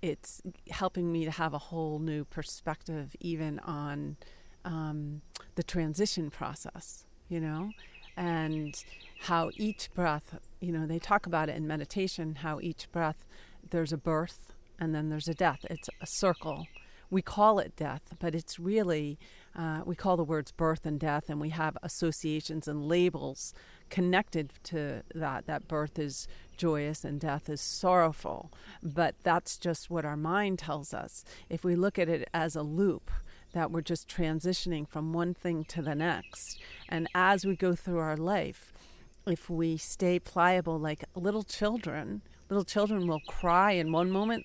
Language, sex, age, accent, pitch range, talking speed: English, female, 40-59, American, 155-180 Hz, 165 wpm